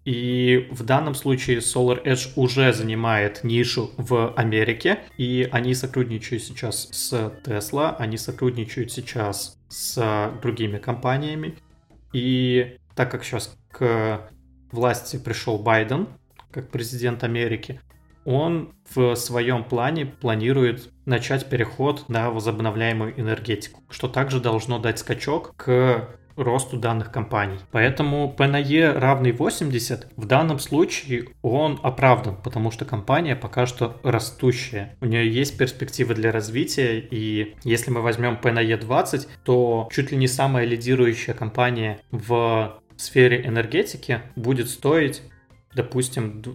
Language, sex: Russian, male